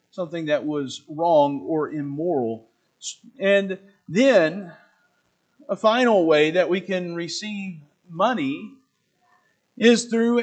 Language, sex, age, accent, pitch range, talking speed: English, male, 40-59, American, 170-210 Hz, 105 wpm